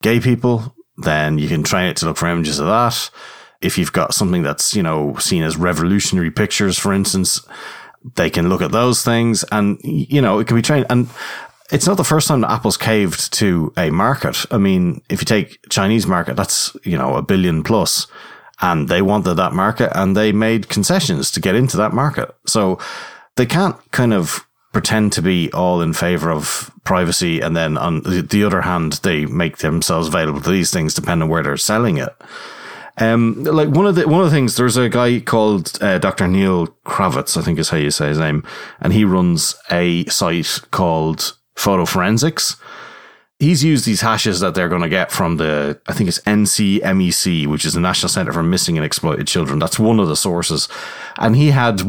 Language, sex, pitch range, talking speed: English, male, 85-115 Hz, 205 wpm